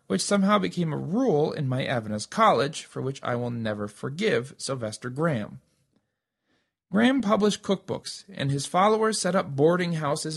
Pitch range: 120-185 Hz